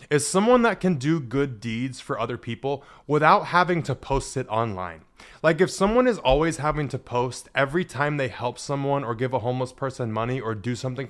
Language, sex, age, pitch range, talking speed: English, male, 20-39, 125-175 Hz, 205 wpm